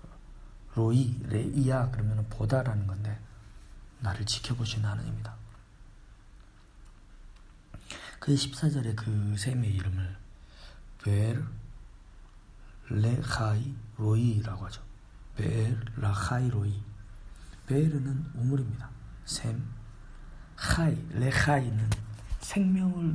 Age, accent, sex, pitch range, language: 40-59, native, male, 105-130 Hz, Korean